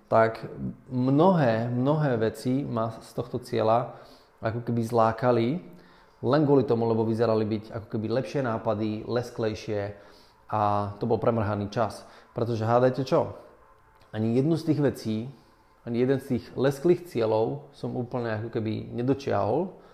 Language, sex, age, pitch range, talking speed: Slovak, male, 20-39, 110-135 Hz, 140 wpm